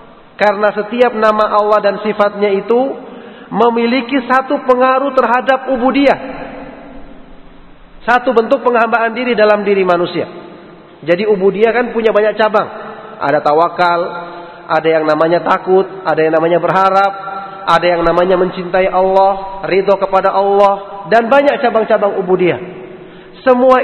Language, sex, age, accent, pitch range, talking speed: Indonesian, male, 40-59, native, 175-230 Hz, 120 wpm